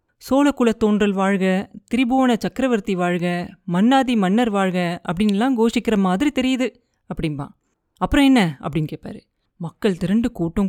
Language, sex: Tamil, female